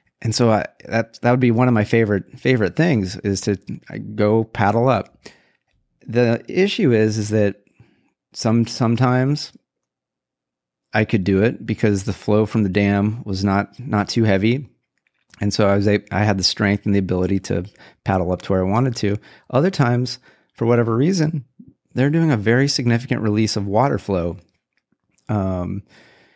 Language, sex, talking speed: English, male, 170 wpm